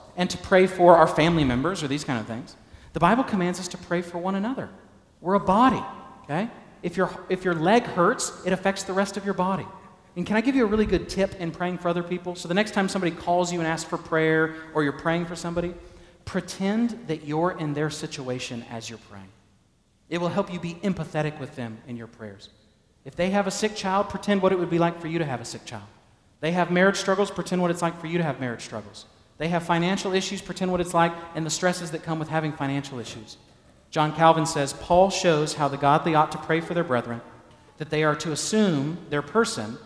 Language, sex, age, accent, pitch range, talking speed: English, male, 40-59, American, 140-190 Hz, 240 wpm